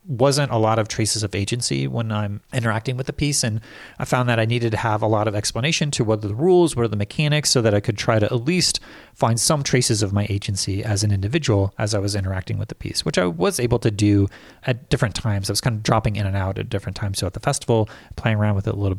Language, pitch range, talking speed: English, 100-125 Hz, 280 wpm